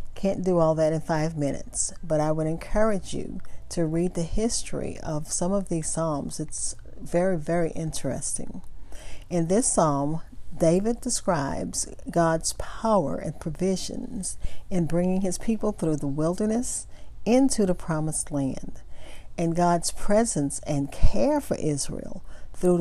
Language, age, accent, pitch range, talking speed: English, 50-69, American, 155-205 Hz, 140 wpm